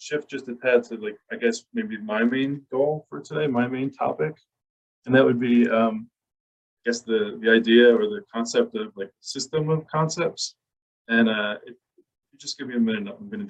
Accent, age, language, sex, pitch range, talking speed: American, 20-39, English, male, 100-150 Hz, 200 wpm